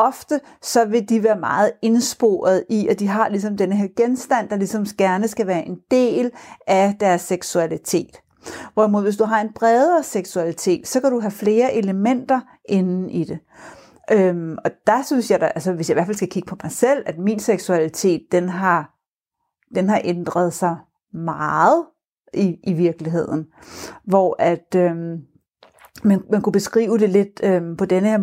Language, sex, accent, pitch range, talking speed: Danish, female, native, 185-225 Hz, 165 wpm